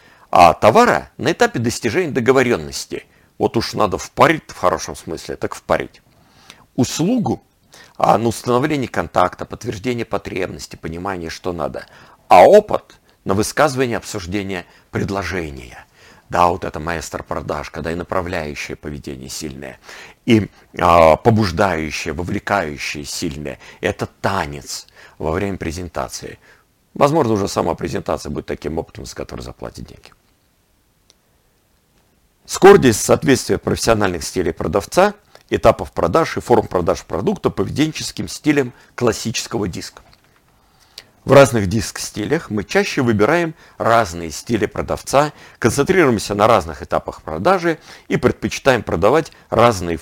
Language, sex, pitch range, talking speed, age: Russian, male, 85-125 Hz, 115 wpm, 50-69